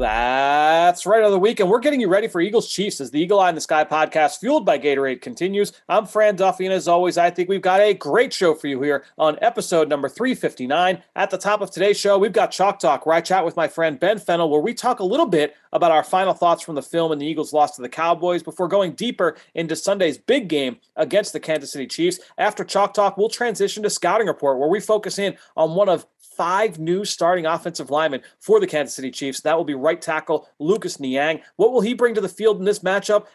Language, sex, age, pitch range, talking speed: English, male, 30-49, 155-205 Hz, 245 wpm